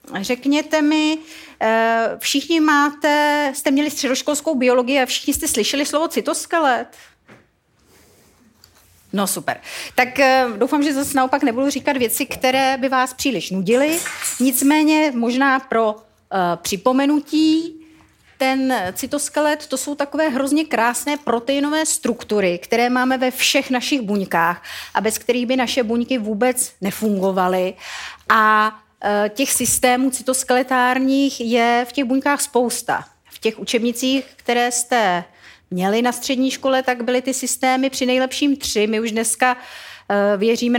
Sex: female